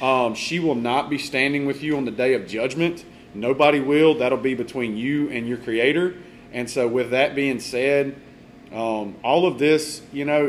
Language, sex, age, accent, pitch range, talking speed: English, male, 30-49, American, 120-145 Hz, 195 wpm